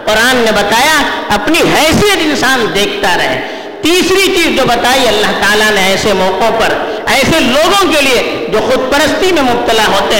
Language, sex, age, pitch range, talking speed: Urdu, female, 50-69, 235-350 Hz, 165 wpm